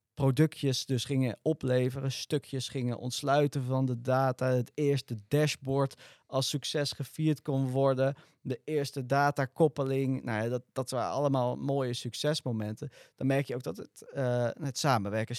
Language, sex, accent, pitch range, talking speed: Dutch, male, Dutch, 115-145 Hz, 150 wpm